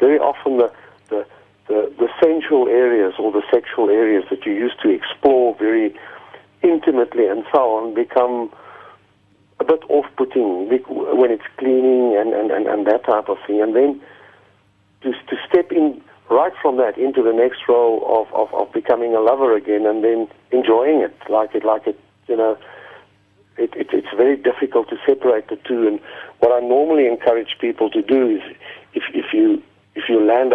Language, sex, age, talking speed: English, male, 60-79, 180 wpm